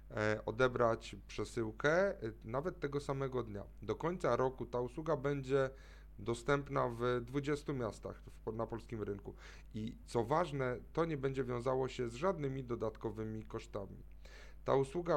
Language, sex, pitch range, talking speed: Polish, male, 110-145 Hz, 130 wpm